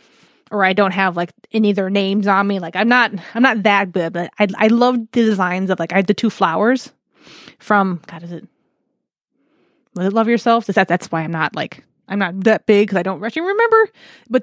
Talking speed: 230 wpm